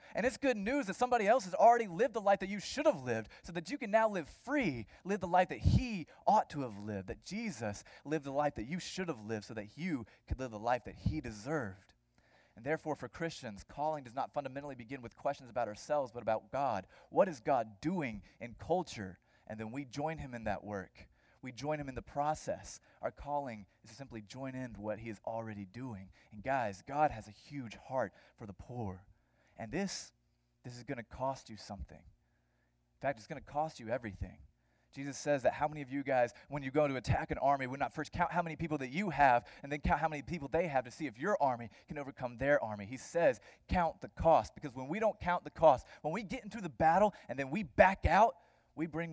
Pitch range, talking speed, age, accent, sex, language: 110-160 Hz, 240 wpm, 30-49, American, male, English